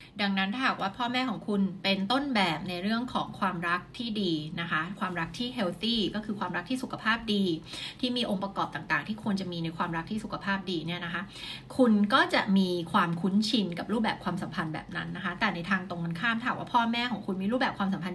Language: Thai